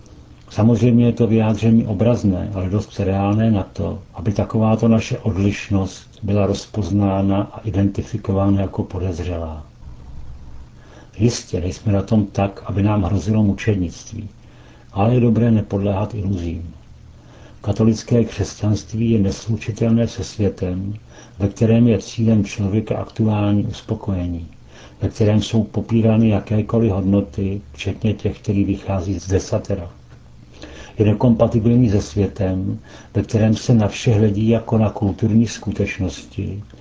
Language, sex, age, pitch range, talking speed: Czech, male, 70-89, 95-110 Hz, 120 wpm